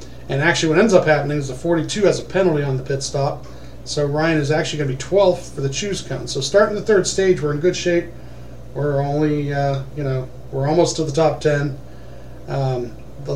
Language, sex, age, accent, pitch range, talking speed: English, male, 40-59, American, 125-155 Hz, 225 wpm